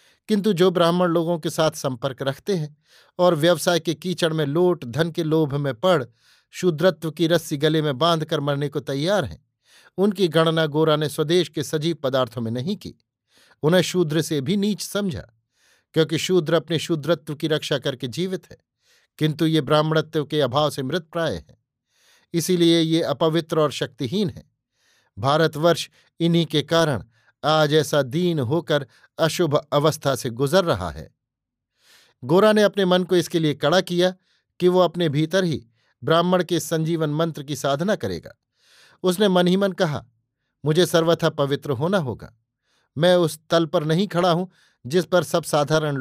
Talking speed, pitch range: 165 wpm, 145-175 Hz